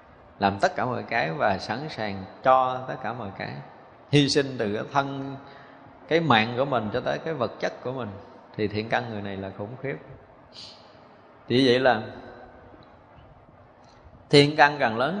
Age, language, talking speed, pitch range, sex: 20-39, Vietnamese, 175 wpm, 105-130 Hz, male